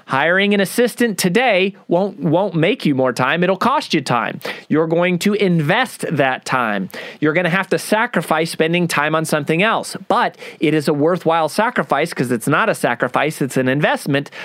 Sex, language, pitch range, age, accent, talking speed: male, English, 150-200 Hz, 30-49, American, 185 wpm